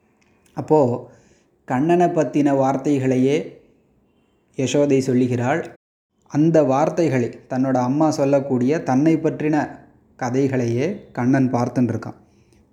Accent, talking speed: native, 75 wpm